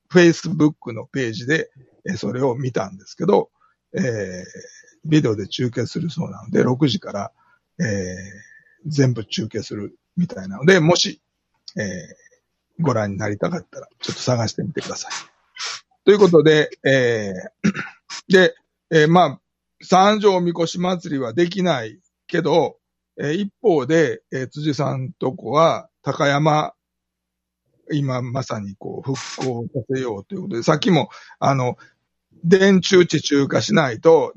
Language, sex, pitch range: Japanese, male, 125-180 Hz